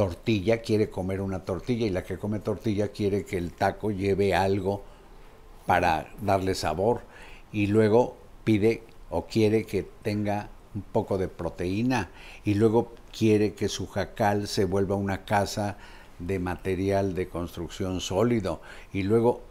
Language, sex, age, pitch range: Spanish, male, 60-79, 90-110 Hz